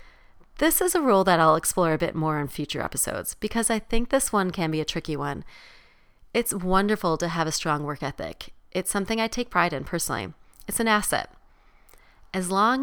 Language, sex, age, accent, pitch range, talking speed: English, female, 30-49, American, 155-210 Hz, 200 wpm